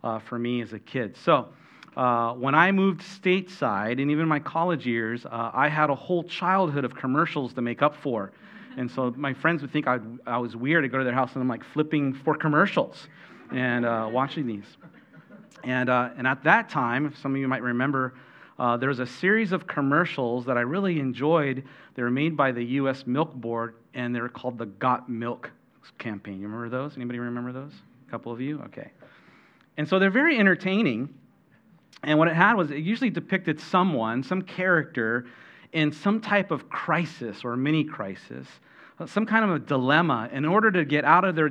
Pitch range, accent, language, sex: 125-165 Hz, American, English, male